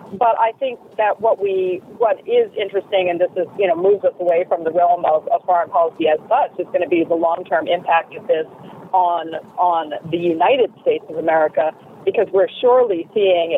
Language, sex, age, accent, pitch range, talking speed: English, female, 40-59, American, 170-280 Hz, 205 wpm